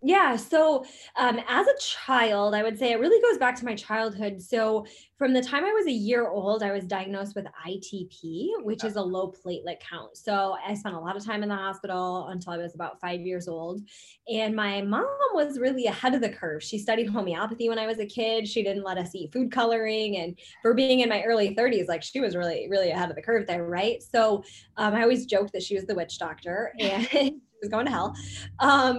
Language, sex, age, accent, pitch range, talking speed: English, female, 20-39, American, 185-240 Hz, 230 wpm